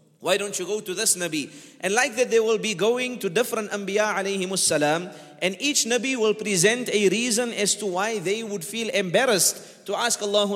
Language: English